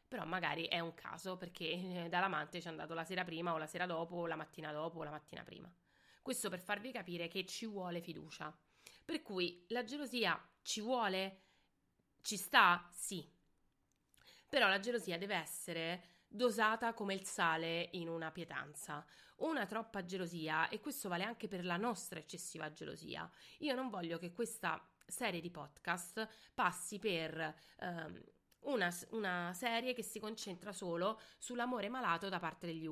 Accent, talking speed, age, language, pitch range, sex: native, 160 wpm, 30-49, Italian, 170-220 Hz, female